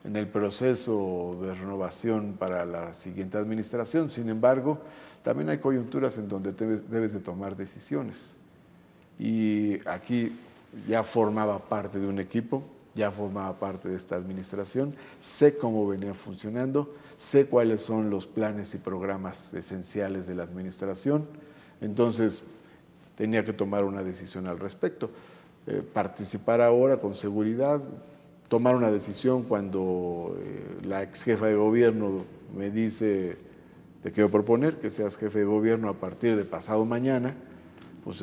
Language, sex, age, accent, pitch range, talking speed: Spanish, male, 50-69, Mexican, 95-120 Hz, 135 wpm